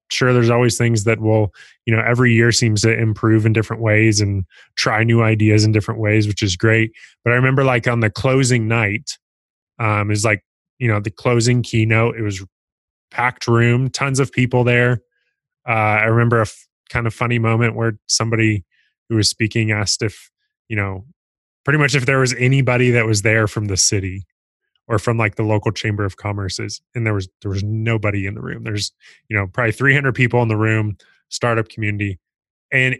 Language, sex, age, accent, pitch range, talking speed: English, male, 20-39, American, 105-125 Hz, 200 wpm